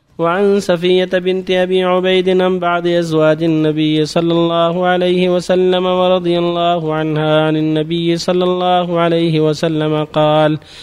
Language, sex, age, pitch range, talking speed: Arabic, male, 30-49, 155-185 Hz, 120 wpm